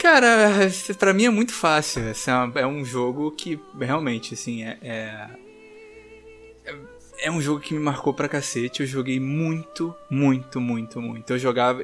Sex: male